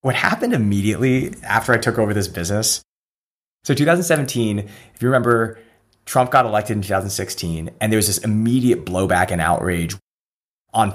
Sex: male